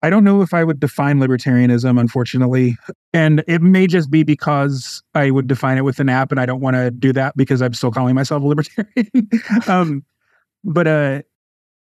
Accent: American